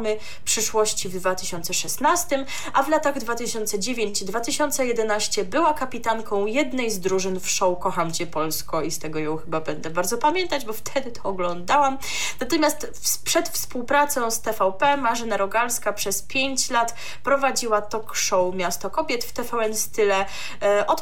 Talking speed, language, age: 140 wpm, Polish, 20-39